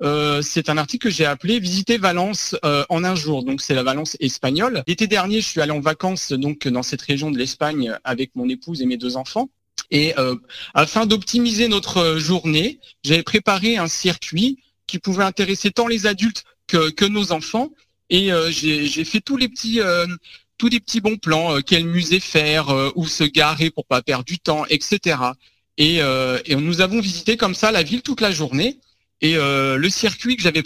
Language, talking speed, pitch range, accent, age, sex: French, 210 wpm, 145-210 Hz, French, 40-59, male